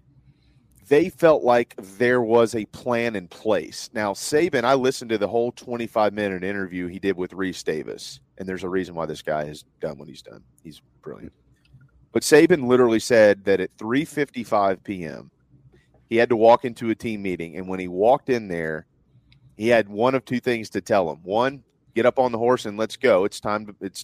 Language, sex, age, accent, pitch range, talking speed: English, male, 40-59, American, 95-125 Hz, 200 wpm